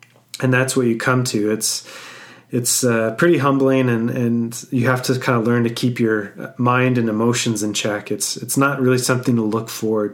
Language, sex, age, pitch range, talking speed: English, male, 30-49, 120-135 Hz, 205 wpm